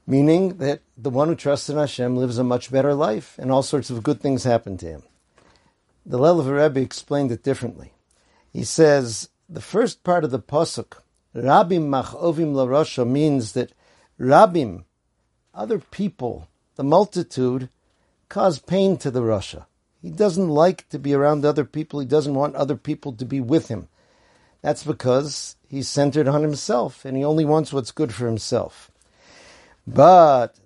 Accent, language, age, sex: American, English, 50-69, male